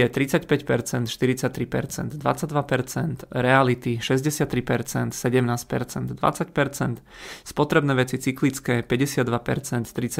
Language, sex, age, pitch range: Czech, male, 30-49, 125-140 Hz